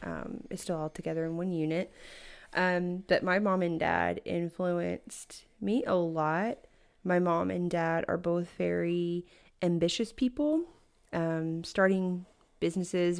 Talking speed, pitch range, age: 135 wpm, 165-185 Hz, 20-39